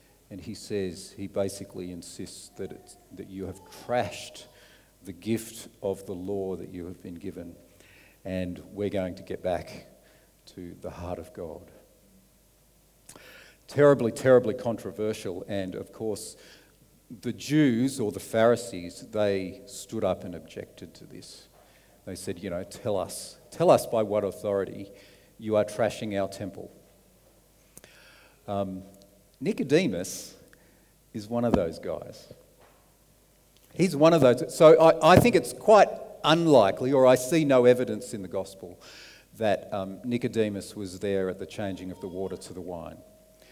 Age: 50-69